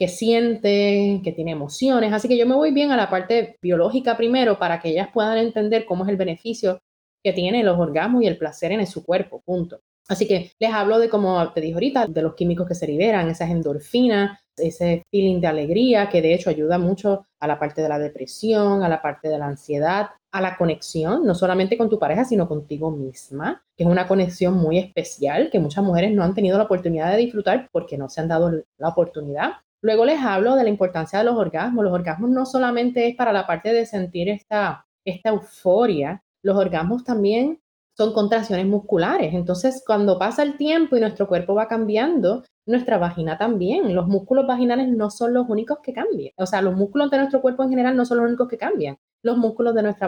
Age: 30-49